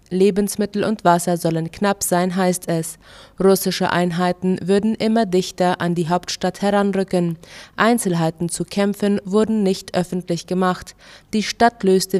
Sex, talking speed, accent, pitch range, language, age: female, 135 wpm, German, 180-200 Hz, German, 20-39